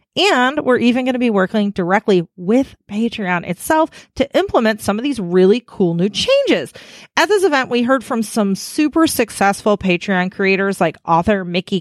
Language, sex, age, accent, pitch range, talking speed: English, female, 30-49, American, 185-290 Hz, 175 wpm